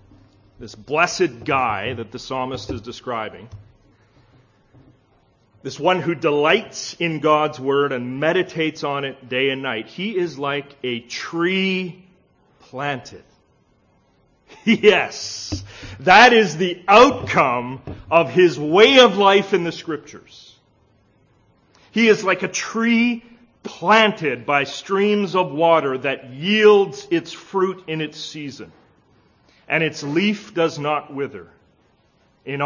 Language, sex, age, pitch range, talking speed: English, male, 40-59, 115-170 Hz, 120 wpm